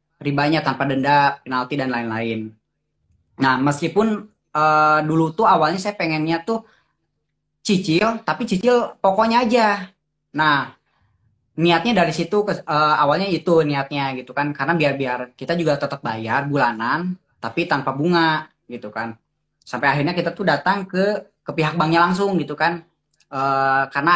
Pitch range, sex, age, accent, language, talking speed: 140-170 Hz, female, 20-39, native, Indonesian, 135 wpm